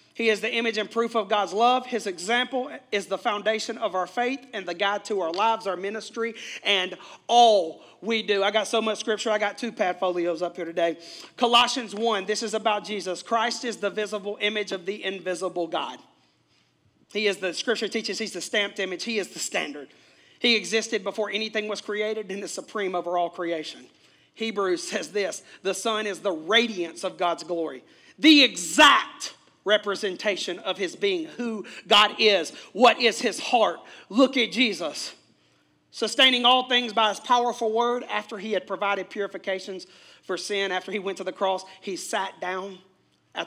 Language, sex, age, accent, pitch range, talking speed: English, male, 40-59, American, 180-225 Hz, 180 wpm